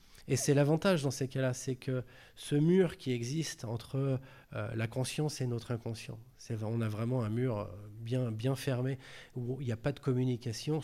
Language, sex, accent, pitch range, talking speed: French, male, French, 120-145 Hz, 195 wpm